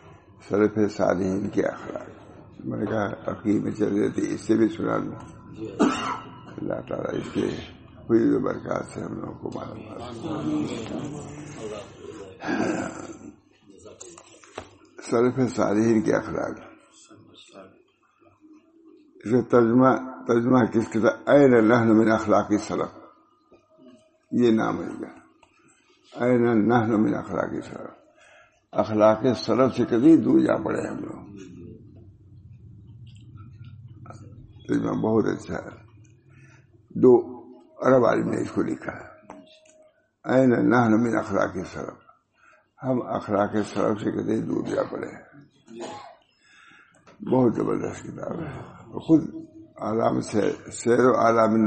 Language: English